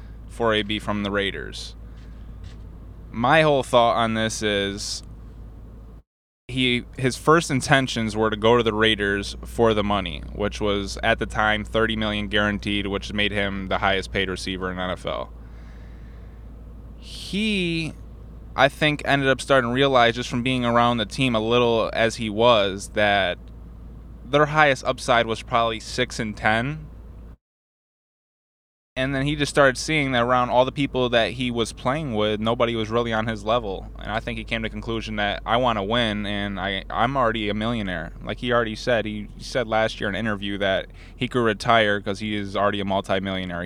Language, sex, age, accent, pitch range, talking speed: English, male, 20-39, American, 100-125 Hz, 175 wpm